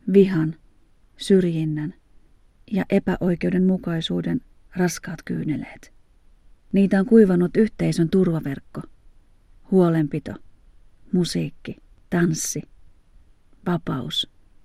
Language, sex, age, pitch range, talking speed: Finnish, female, 40-59, 140-185 Hz, 60 wpm